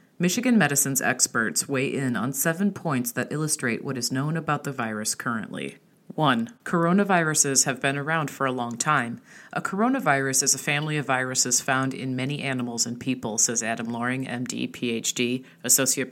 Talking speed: 170 wpm